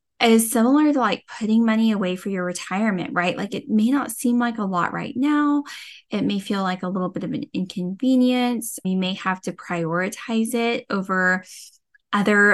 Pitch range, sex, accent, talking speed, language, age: 185-250 Hz, female, American, 185 wpm, English, 10-29